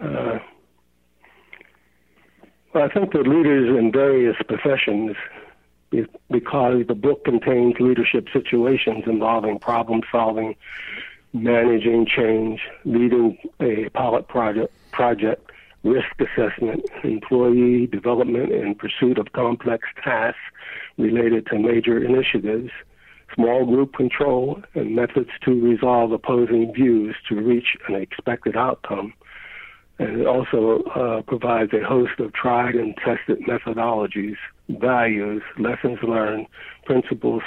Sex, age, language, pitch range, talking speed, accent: male, 60-79, English, 110-125 Hz, 105 wpm, American